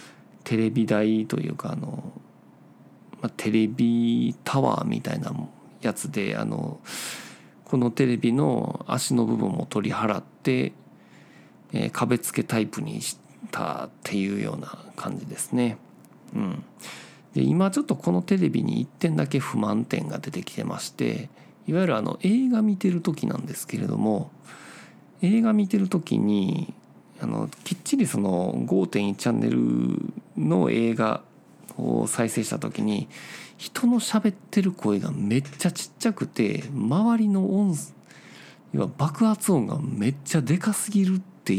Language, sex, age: Japanese, male, 50-69